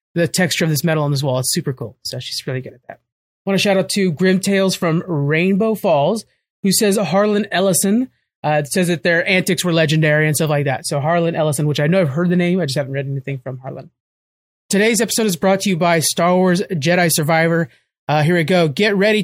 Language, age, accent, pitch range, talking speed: English, 30-49, American, 155-195 Hz, 240 wpm